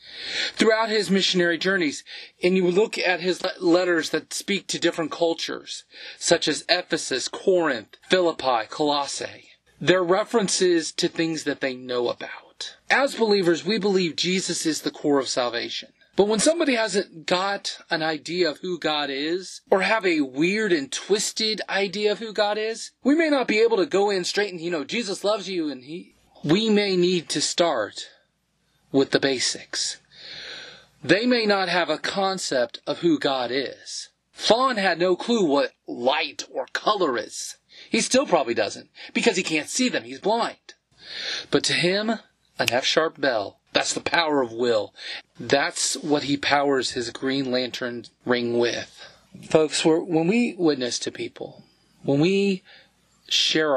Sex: male